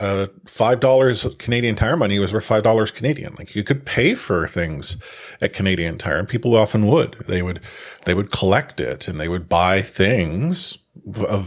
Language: English